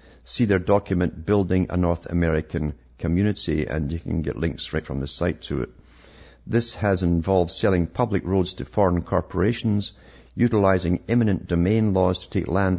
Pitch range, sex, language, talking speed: 80-95 Hz, male, English, 165 wpm